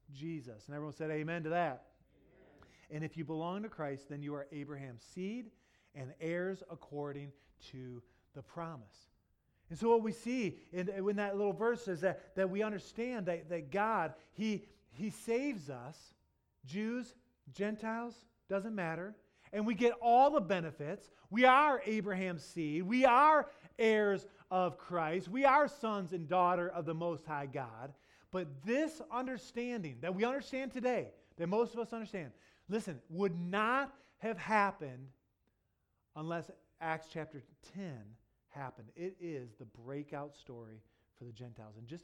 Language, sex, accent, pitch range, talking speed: English, male, American, 140-205 Hz, 155 wpm